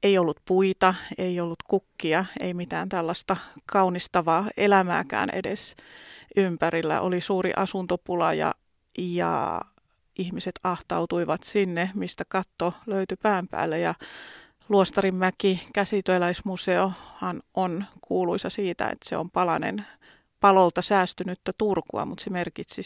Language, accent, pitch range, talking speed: Finnish, native, 180-200 Hz, 110 wpm